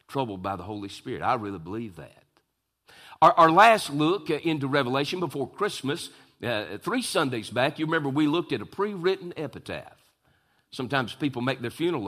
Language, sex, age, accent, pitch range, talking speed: English, male, 50-69, American, 125-175 Hz, 170 wpm